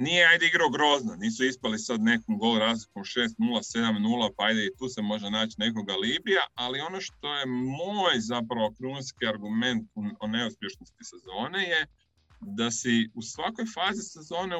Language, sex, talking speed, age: Croatian, male, 160 wpm, 30-49